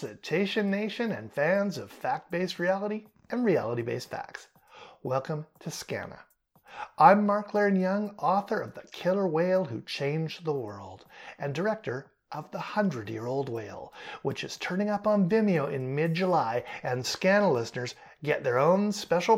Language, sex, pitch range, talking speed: English, male, 140-215 Hz, 140 wpm